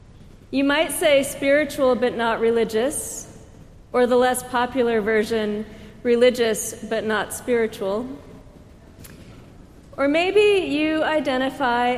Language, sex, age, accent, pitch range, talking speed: English, female, 40-59, American, 215-265 Hz, 100 wpm